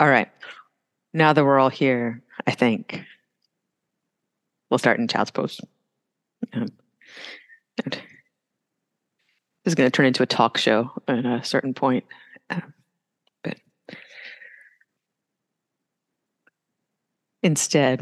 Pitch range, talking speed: 125-145 Hz, 105 wpm